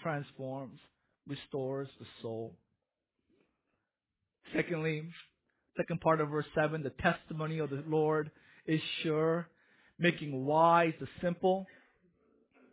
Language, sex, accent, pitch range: English, male, American, 165-220 Hz